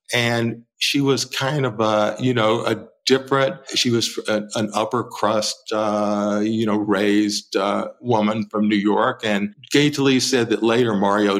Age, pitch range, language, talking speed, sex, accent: 50-69, 105-130 Hz, English, 165 wpm, male, American